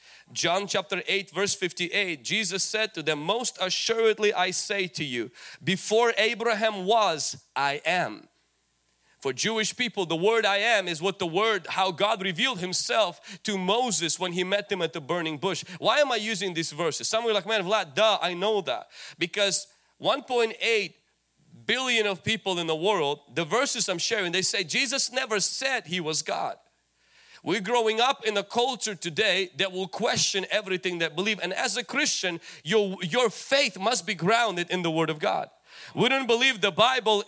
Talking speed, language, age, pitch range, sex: 180 wpm, English, 30-49, 180-235 Hz, male